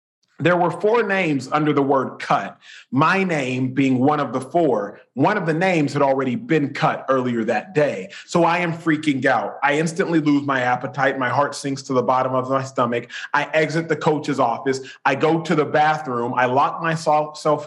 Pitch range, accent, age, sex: 135-170 Hz, American, 30-49, male